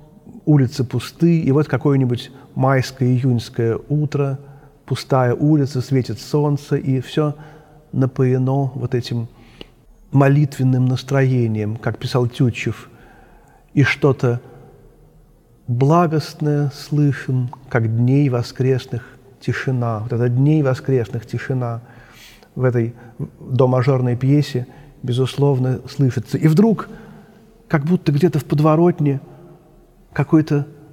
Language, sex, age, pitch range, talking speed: Russian, male, 40-59, 125-155 Hz, 95 wpm